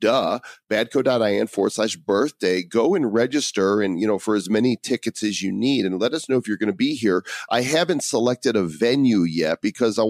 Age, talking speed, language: 40-59, 215 wpm, English